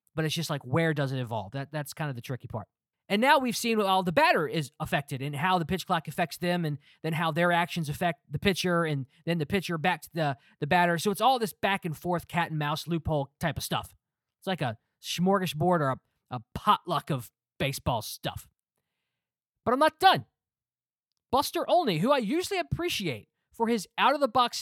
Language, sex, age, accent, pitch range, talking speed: English, male, 20-39, American, 145-200 Hz, 210 wpm